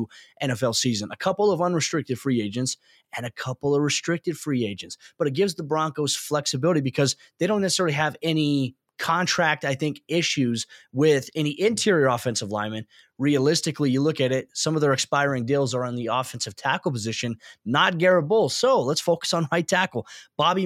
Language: English